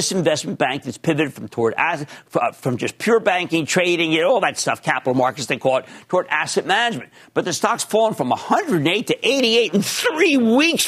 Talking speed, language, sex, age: 205 wpm, English, male, 50-69